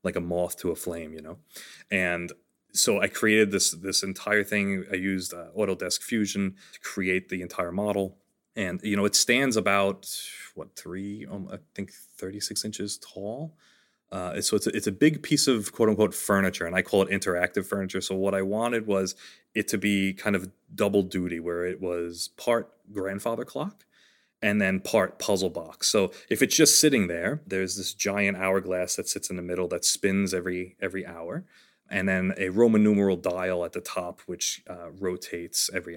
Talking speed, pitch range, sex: 190 wpm, 90-105 Hz, male